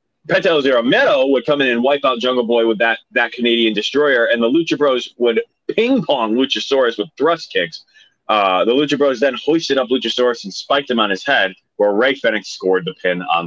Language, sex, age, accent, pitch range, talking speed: English, male, 30-49, American, 105-150 Hz, 210 wpm